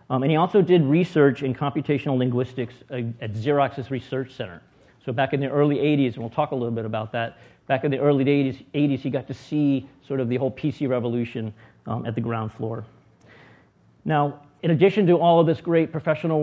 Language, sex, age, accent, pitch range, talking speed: English, male, 40-59, American, 125-145 Hz, 210 wpm